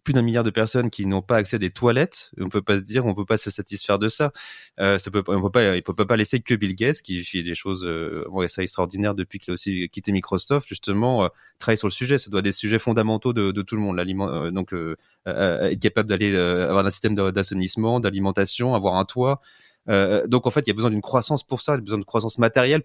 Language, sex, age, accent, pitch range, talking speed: French, male, 30-49, French, 95-115 Hz, 270 wpm